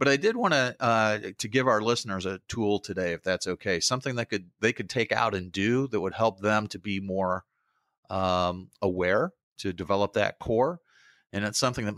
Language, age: English, 30-49